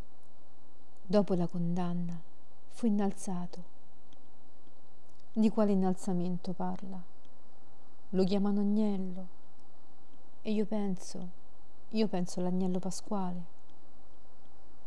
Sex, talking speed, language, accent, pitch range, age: female, 75 wpm, Italian, native, 180-210 Hz, 40-59